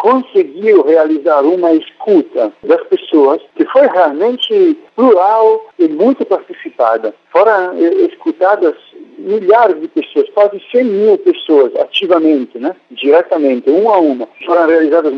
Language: Portuguese